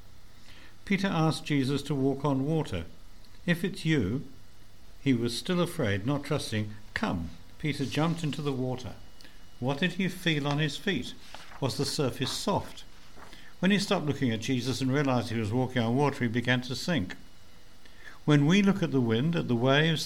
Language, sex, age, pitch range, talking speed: English, male, 60-79, 105-155 Hz, 175 wpm